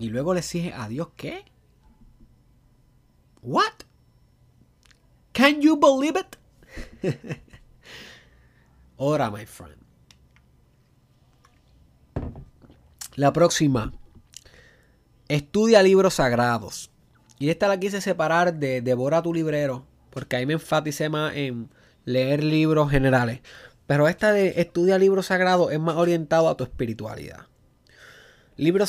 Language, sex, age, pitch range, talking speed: Spanish, male, 20-39, 125-175 Hz, 105 wpm